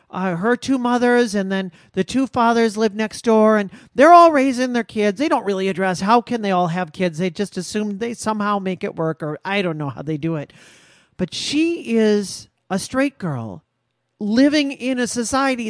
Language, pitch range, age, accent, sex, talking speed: English, 195-275 Hz, 40-59, American, male, 205 wpm